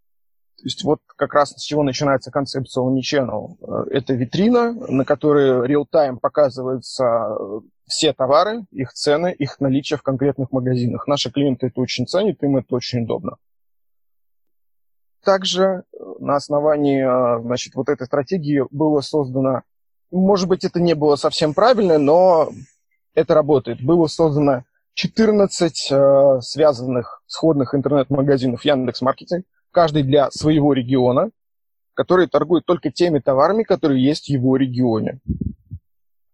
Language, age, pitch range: Russian, 20-39, 130-155 Hz